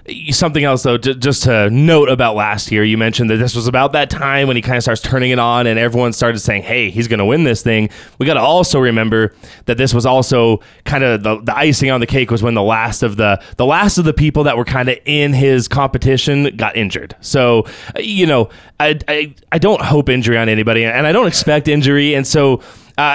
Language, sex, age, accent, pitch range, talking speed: English, male, 20-39, American, 115-145 Hz, 235 wpm